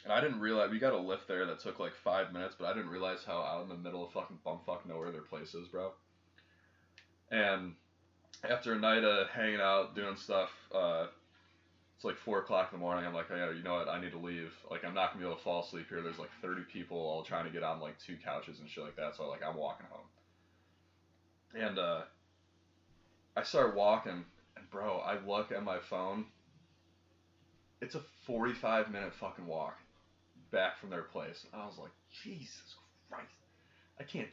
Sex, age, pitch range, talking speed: male, 20-39, 85-100 Hz, 210 wpm